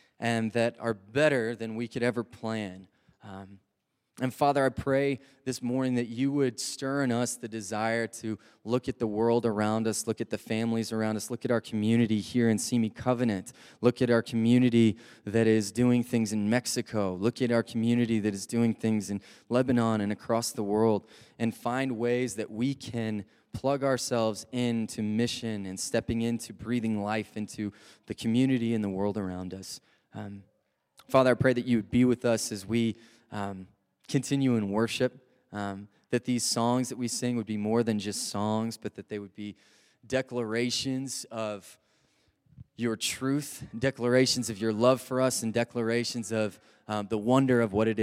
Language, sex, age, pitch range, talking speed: English, male, 20-39, 105-120 Hz, 180 wpm